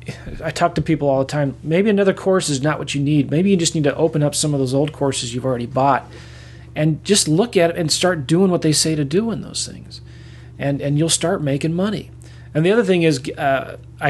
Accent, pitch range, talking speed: American, 120-145 Hz, 245 wpm